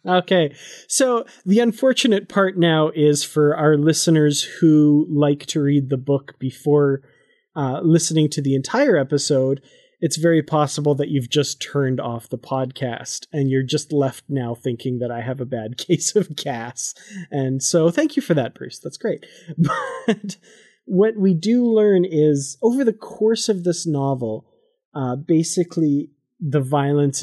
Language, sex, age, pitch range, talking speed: English, male, 30-49, 135-175 Hz, 160 wpm